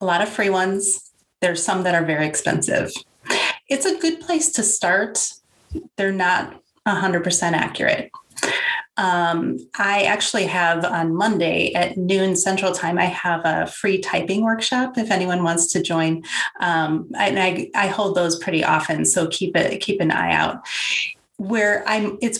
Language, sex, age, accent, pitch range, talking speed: English, female, 30-49, American, 180-215 Hz, 160 wpm